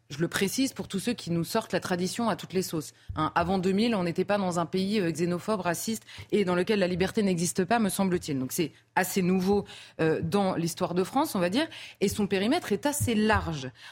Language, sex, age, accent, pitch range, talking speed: French, female, 20-39, French, 175-235 Hz, 230 wpm